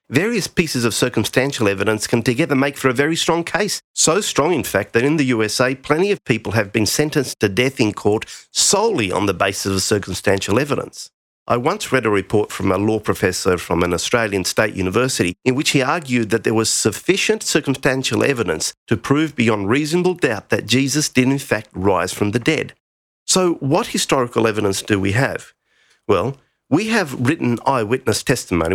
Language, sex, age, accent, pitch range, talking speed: English, male, 50-69, Australian, 110-145 Hz, 185 wpm